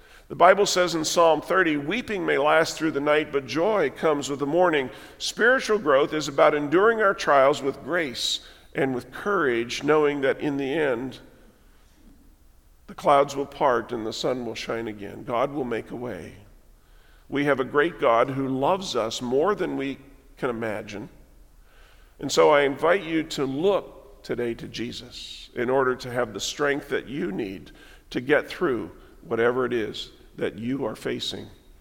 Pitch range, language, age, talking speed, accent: 110-155 Hz, English, 50-69, 175 wpm, American